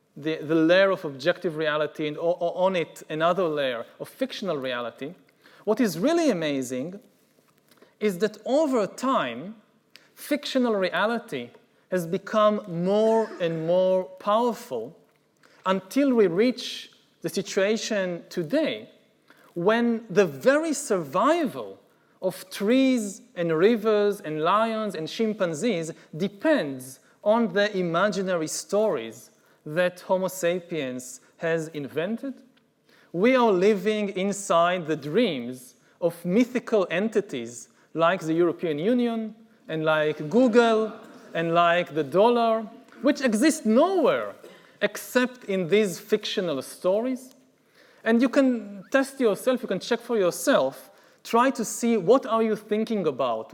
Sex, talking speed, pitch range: male, 115 wpm, 175-235 Hz